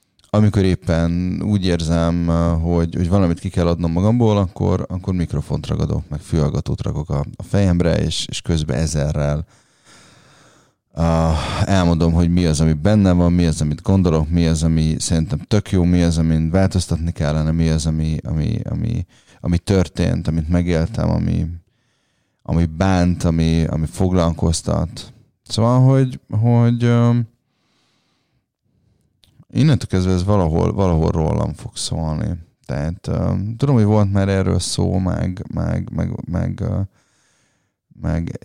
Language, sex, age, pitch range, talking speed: Hungarian, male, 20-39, 85-105 Hz, 135 wpm